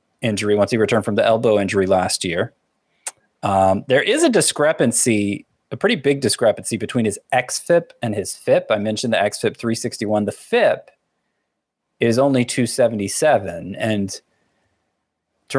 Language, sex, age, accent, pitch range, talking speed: English, male, 20-39, American, 105-130 Hz, 150 wpm